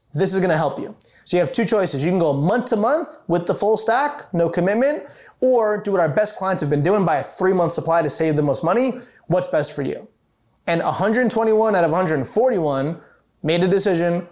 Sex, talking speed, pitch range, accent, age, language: male, 220 wpm, 150-190 Hz, American, 20-39, English